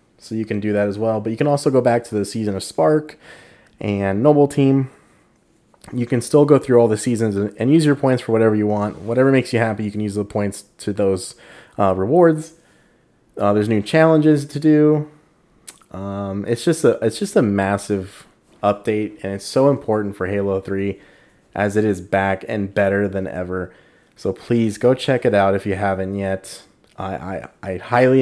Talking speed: 195 wpm